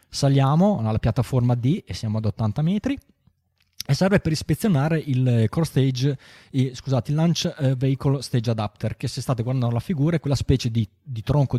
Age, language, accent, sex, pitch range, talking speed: 20-39, Italian, native, male, 115-140 Hz, 175 wpm